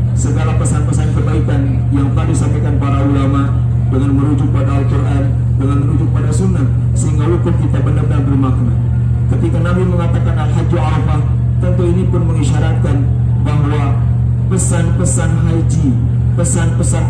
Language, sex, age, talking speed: English, male, 40-59, 120 wpm